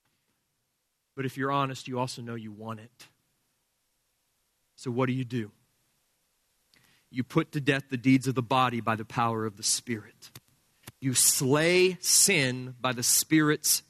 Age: 40-59